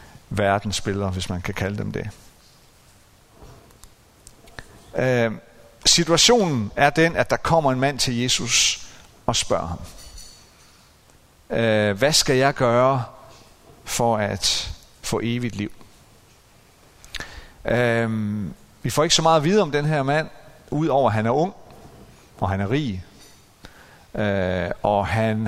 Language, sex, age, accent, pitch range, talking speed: Danish, male, 50-69, native, 100-130 Hz, 125 wpm